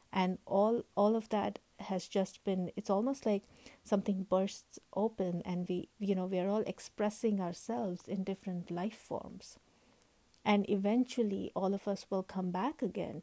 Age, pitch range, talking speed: 50-69, 180-210 Hz, 165 wpm